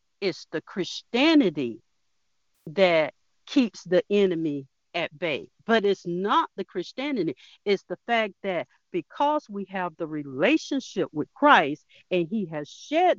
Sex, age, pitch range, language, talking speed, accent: female, 50-69, 165-275 Hz, English, 130 wpm, American